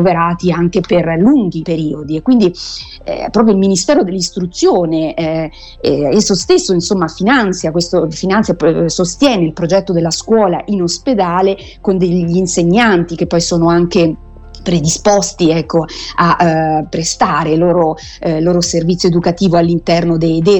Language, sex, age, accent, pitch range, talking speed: Italian, female, 30-49, native, 170-210 Hz, 130 wpm